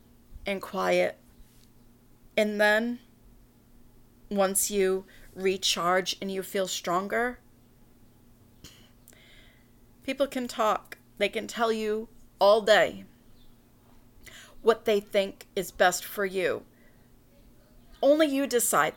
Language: English